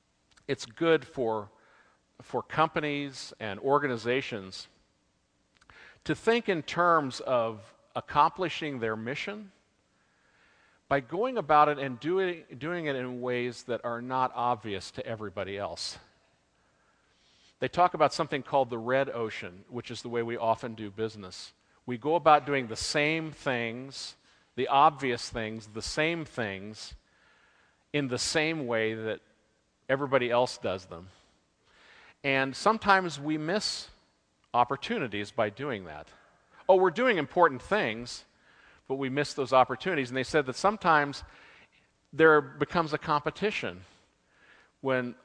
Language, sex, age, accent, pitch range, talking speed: English, male, 50-69, American, 115-150 Hz, 130 wpm